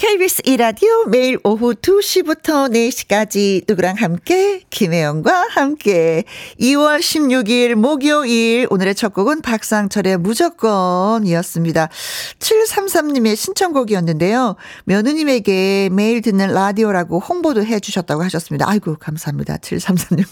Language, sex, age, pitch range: Korean, female, 50-69, 180-250 Hz